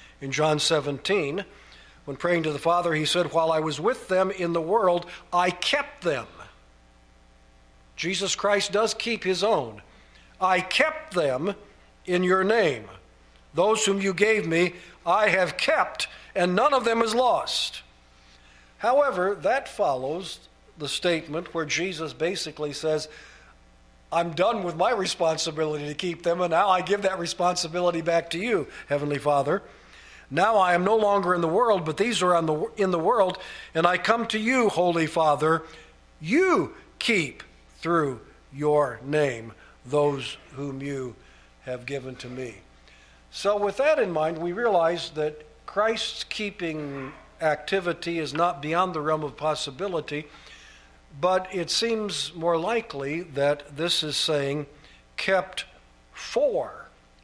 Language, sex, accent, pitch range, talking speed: English, male, American, 135-185 Hz, 145 wpm